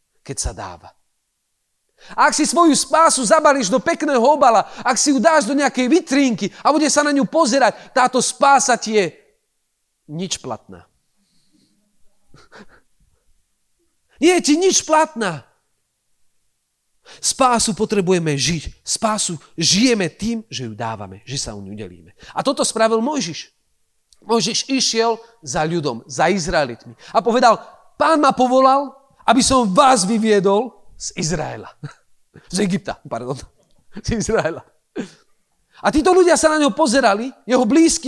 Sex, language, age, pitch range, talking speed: male, Slovak, 40-59, 205-290 Hz, 130 wpm